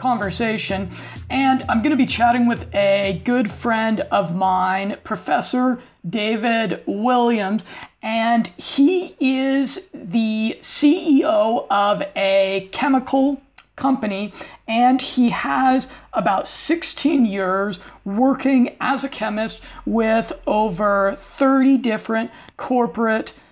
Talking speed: 100 wpm